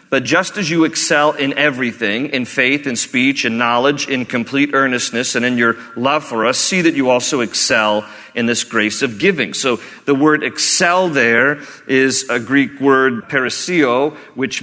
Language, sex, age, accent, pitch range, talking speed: English, male, 40-59, American, 120-170 Hz, 175 wpm